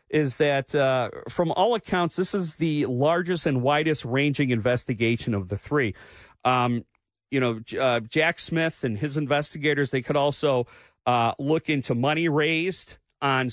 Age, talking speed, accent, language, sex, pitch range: 40-59, 155 wpm, American, English, male, 125-160 Hz